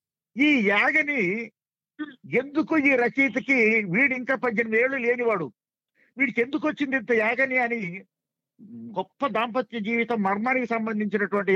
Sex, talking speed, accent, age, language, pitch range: male, 105 wpm, native, 50-69, Telugu, 165-235 Hz